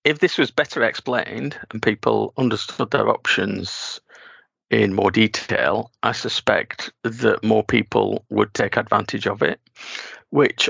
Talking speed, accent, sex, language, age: 135 wpm, British, male, English, 40-59